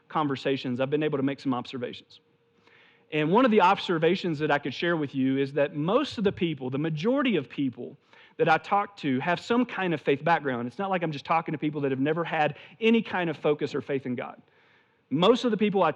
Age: 40-59